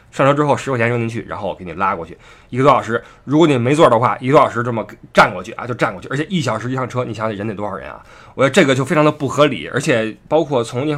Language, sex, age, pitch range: Chinese, male, 20-39, 115-175 Hz